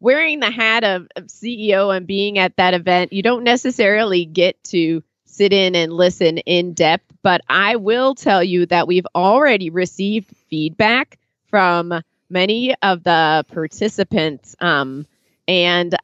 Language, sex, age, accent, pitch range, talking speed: English, female, 30-49, American, 165-205 Hz, 140 wpm